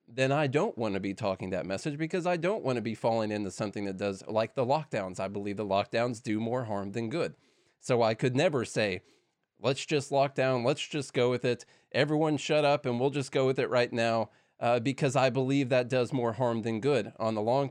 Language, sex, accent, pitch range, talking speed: English, male, American, 110-145 Hz, 235 wpm